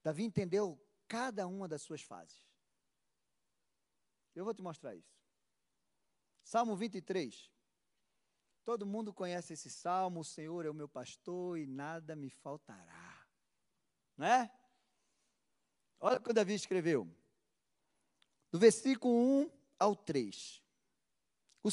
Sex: male